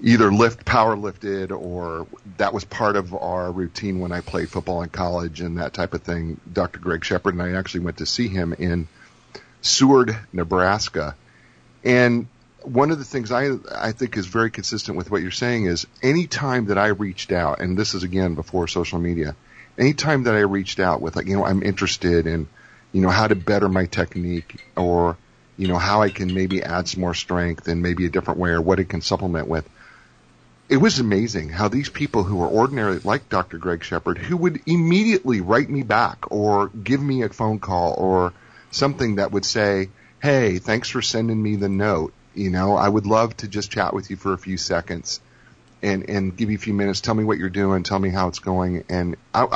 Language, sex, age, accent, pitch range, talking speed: English, male, 40-59, American, 90-110 Hz, 215 wpm